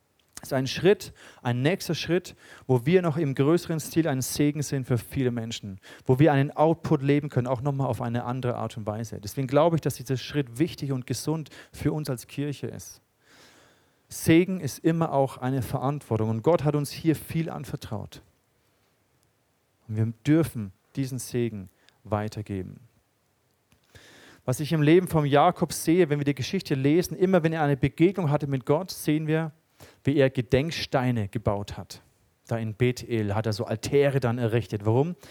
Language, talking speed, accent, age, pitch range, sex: German, 175 wpm, German, 40-59, 115-150 Hz, male